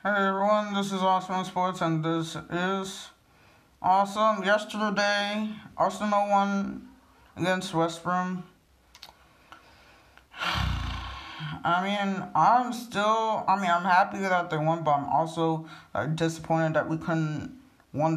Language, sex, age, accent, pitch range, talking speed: English, male, 20-39, American, 155-200 Hz, 115 wpm